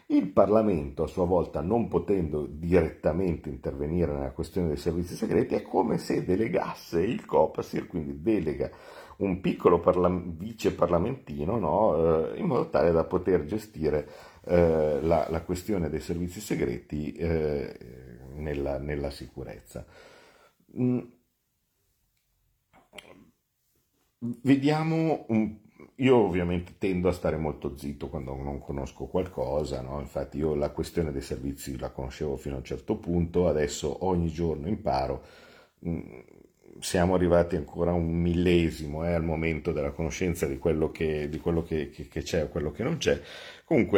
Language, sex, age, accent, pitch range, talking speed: Italian, male, 50-69, native, 75-90 Hz, 130 wpm